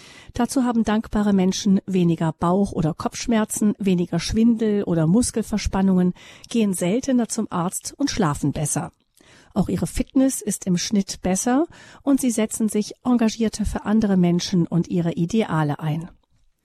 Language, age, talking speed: German, 40-59, 135 wpm